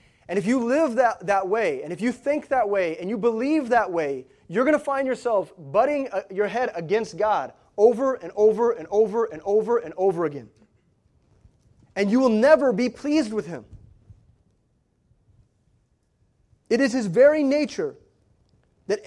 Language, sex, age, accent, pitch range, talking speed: English, male, 30-49, American, 170-240 Hz, 165 wpm